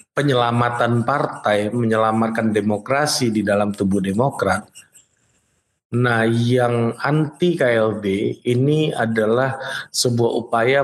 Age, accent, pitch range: 20-39, native, 105-125 Hz